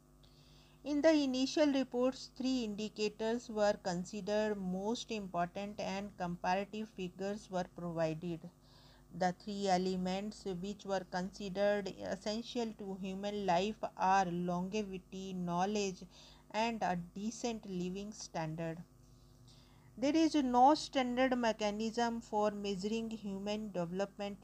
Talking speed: 105 wpm